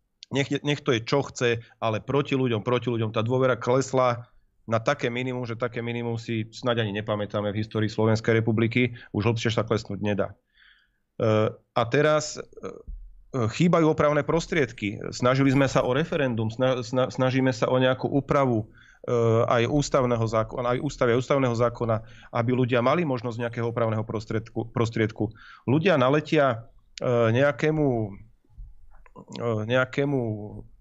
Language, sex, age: Slovak, male, 40-59